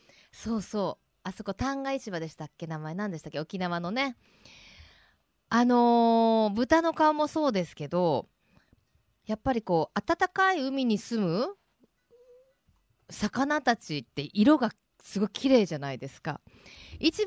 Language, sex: Japanese, female